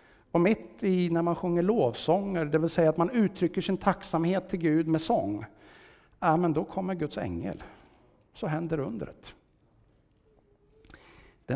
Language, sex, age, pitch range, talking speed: Swedish, male, 60-79, 150-205 Hz, 145 wpm